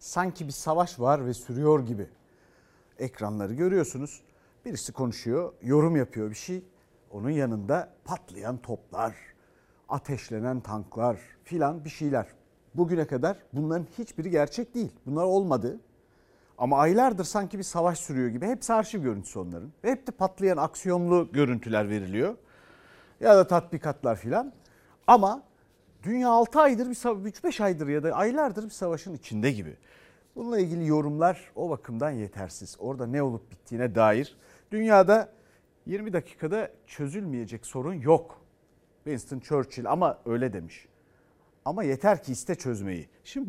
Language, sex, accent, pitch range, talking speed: Turkish, male, native, 120-180 Hz, 130 wpm